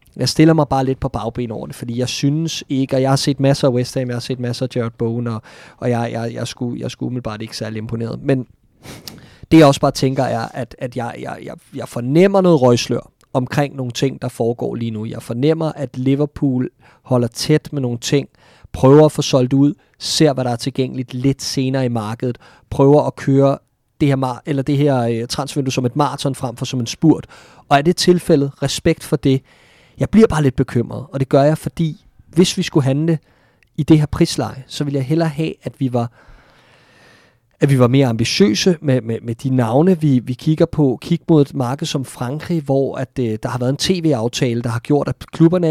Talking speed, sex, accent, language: 215 wpm, male, native, Danish